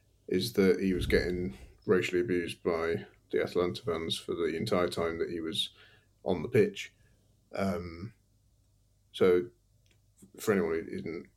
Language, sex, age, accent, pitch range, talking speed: English, male, 30-49, British, 95-110 Hz, 135 wpm